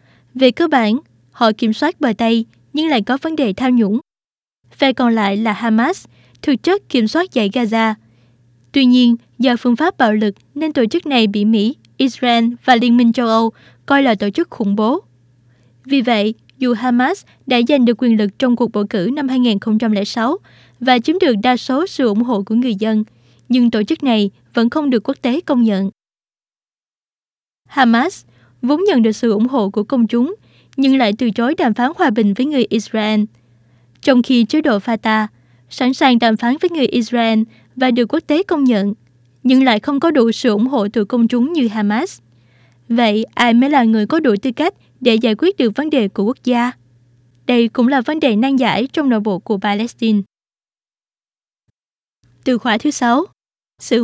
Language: Chinese